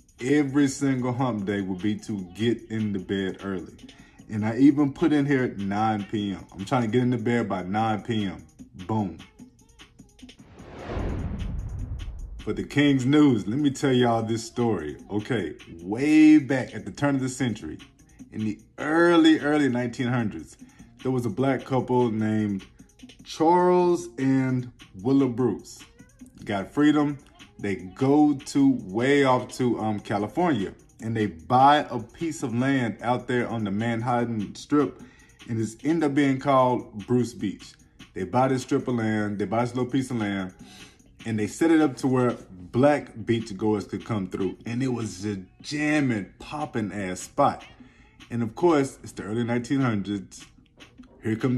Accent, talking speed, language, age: American, 165 wpm, English, 20-39